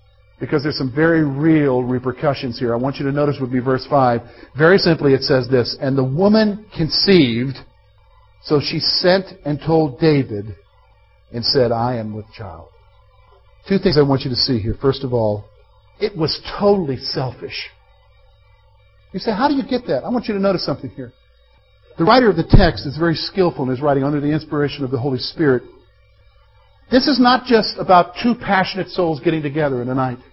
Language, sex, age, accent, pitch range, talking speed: English, male, 50-69, American, 130-200 Hz, 190 wpm